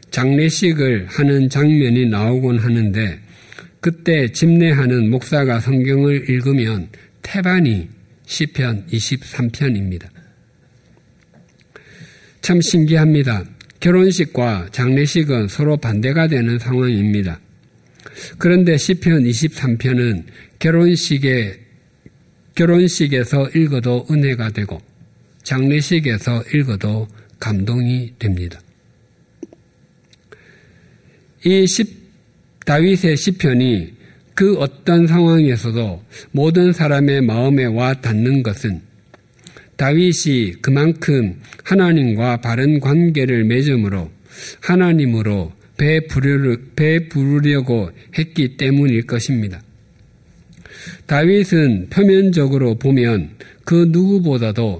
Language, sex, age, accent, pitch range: Korean, male, 50-69, native, 115-160 Hz